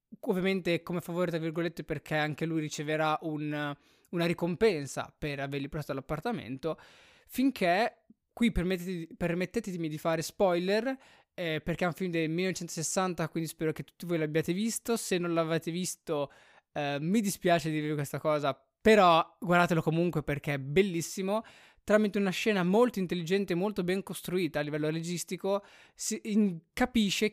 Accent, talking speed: native, 150 wpm